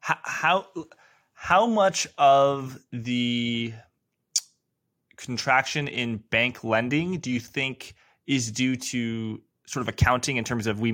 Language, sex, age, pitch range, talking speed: English, male, 20-39, 110-135 Hz, 120 wpm